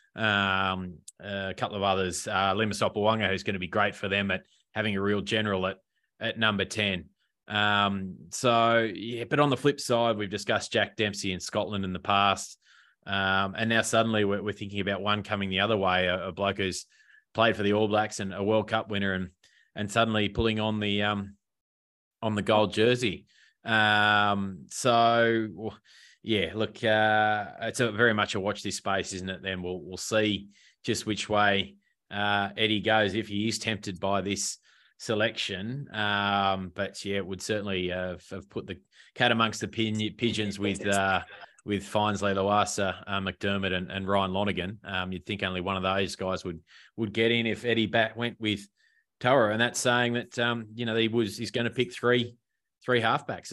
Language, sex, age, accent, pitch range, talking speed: English, male, 20-39, Australian, 95-110 Hz, 195 wpm